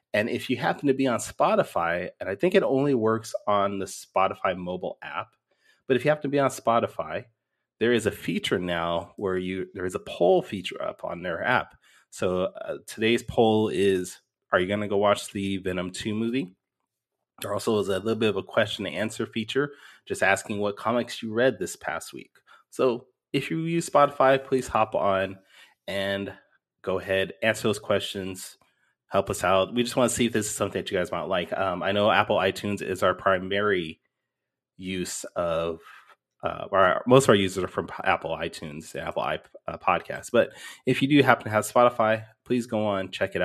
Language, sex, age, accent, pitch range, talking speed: English, male, 30-49, American, 95-120 Hz, 200 wpm